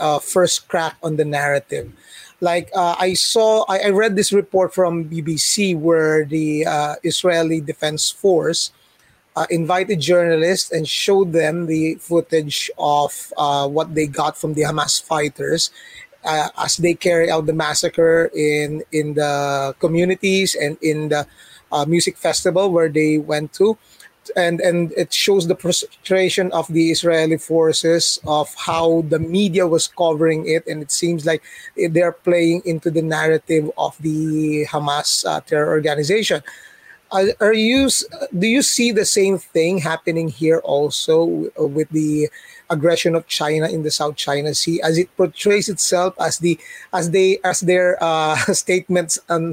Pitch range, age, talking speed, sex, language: 155-180 Hz, 20-39, 155 wpm, male, Filipino